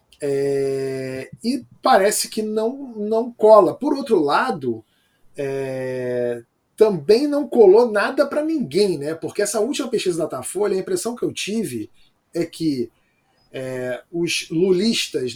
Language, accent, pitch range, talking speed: Portuguese, Brazilian, 150-225 Hz, 135 wpm